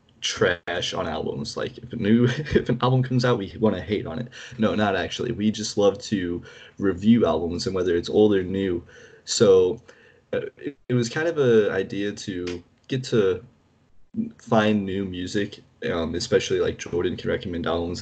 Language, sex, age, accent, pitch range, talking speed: English, male, 20-39, American, 95-120 Hz, 185 wpm